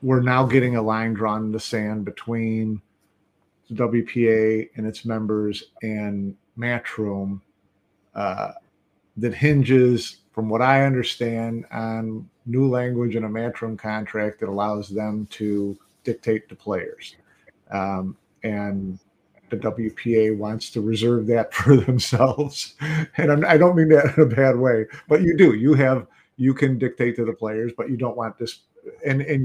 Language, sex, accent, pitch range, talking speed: English, male, American, 110-130 Hz, 155 wpm